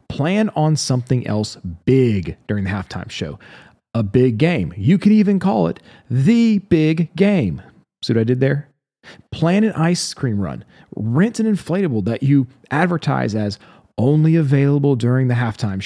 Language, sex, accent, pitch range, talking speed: English, male, American, 110-155 Hz, 160 wpm